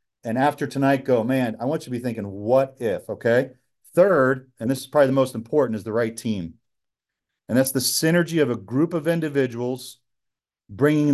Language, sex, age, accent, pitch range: Japanese, male, 40-59, American, 115-135 Hz